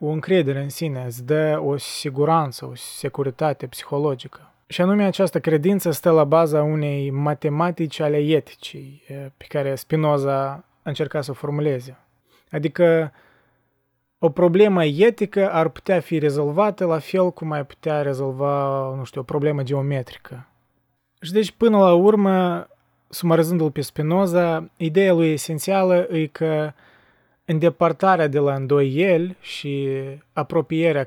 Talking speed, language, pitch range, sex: 130 wpm, Romanian, 140-170 Hz, male